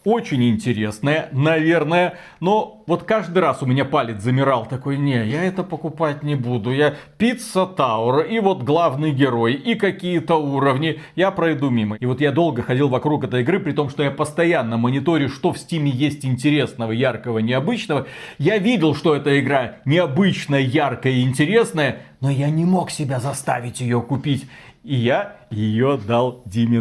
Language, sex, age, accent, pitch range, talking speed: Russian, male, 40-59, native, 130-175 Hz, 165 wpm